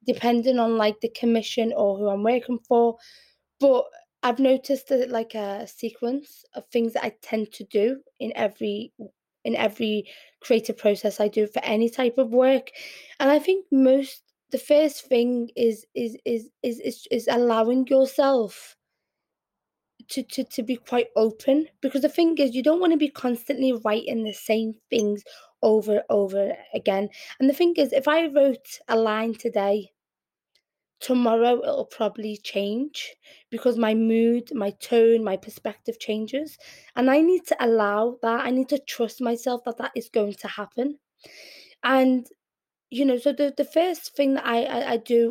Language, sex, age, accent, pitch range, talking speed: English, female, 20-39, British, 220-270 Hz, 170 wpm